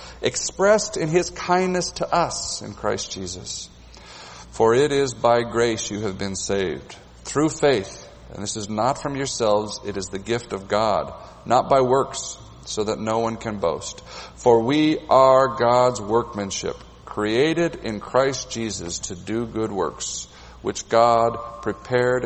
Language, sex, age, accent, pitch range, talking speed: English, male, 50-69, American, 85-120 Hz, 155 wpm